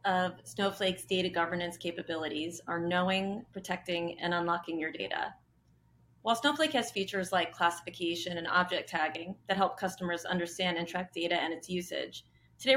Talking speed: 150 wpm